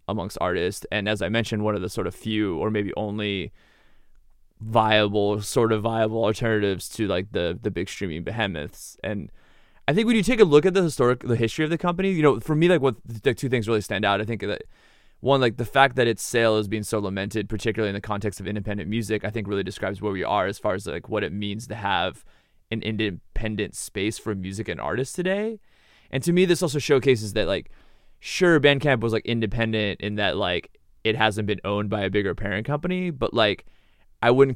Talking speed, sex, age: 225 wpm, male, 20-39